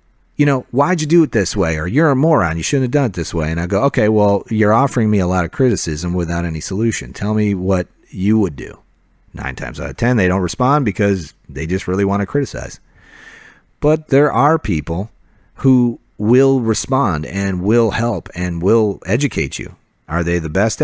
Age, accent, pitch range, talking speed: 40-59, American, 90-125 Hz, 210 wpm